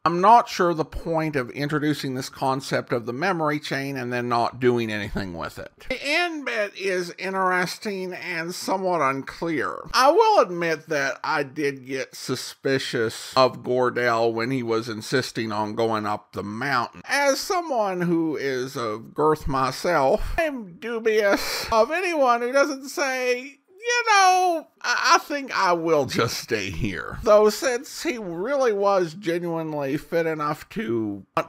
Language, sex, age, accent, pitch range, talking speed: English, male, 50-69, American, 130-195 Hz, 150 wpm